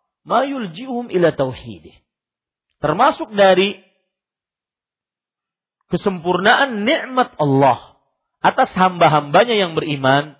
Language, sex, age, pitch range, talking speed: Malay, male, 50-69, 150-240 Hz, 70 wpm